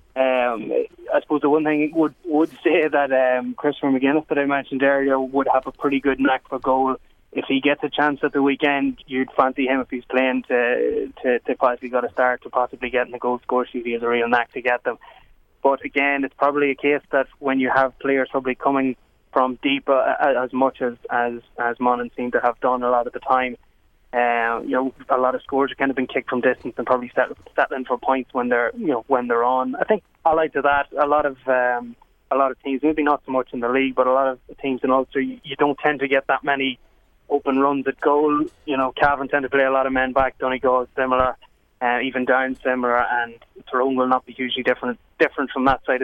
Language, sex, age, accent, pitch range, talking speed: English, male, 20-39, Irish, 125-140 Hz, 245 wpm